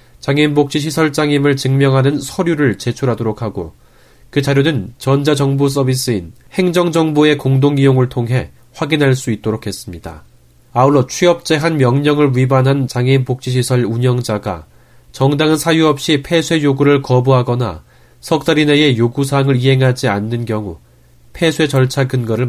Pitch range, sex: 120-150 Hz, male